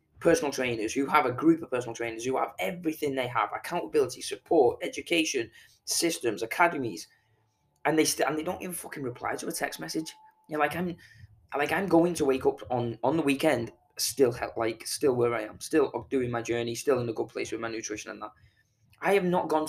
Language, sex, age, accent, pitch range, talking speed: English, male, 20-39, British, 115-160 Hz, 220 wpm